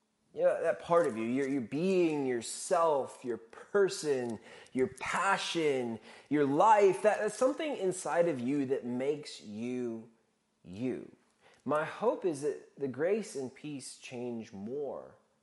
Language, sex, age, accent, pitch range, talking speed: English, male, 20-39, American, 110-170 Hz, 135 wpm